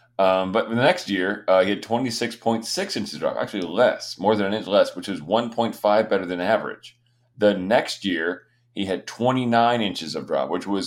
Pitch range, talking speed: 95-120 Hz, 195 wpm